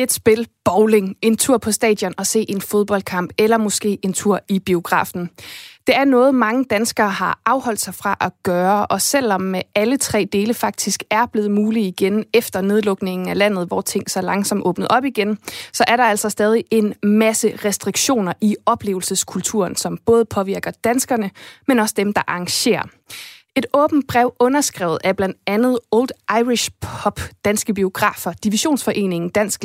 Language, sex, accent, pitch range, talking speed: Danish, female, native, 195-230 Hz, 165 wpm